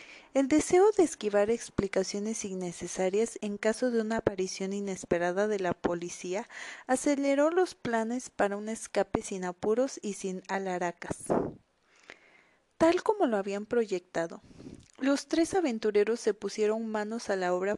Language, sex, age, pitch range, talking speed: Spanish, female, 30-49, 195-255 Hz, 135 wpm